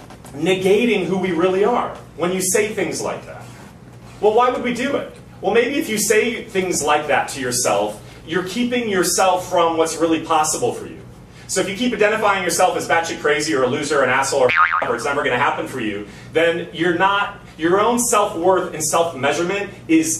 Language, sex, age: English, male, 30-49